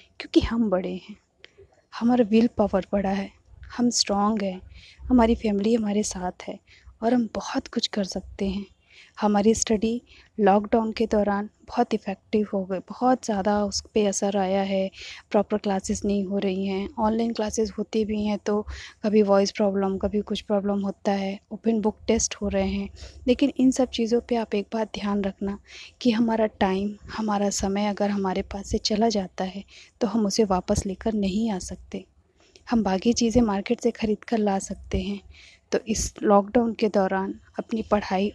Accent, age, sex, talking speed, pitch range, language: native, 20-39, female, 175 wpm, 195-230 Hz, Hindi